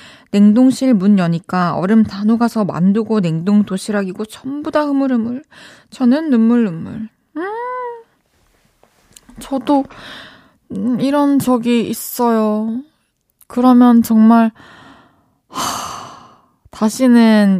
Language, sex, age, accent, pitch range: Korean, female, 20-39, native, 180-245 Hz